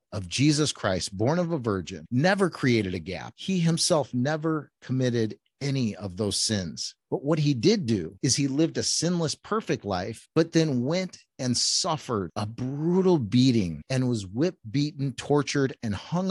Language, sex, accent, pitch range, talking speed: English, male, American, 110-155 Hz, 170 wpm